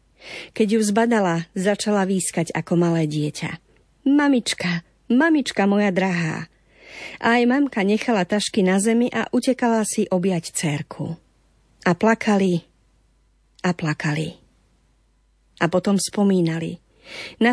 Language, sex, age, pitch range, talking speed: Slovak, female, 40-59, 165-220 Hz, 110 wpm